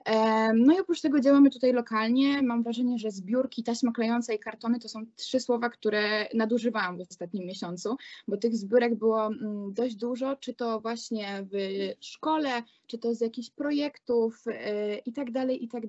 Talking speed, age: 170 wpm, 20-39